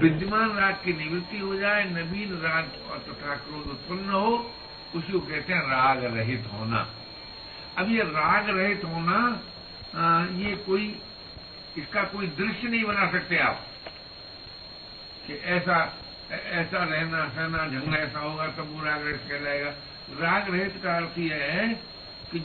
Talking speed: 140 wpm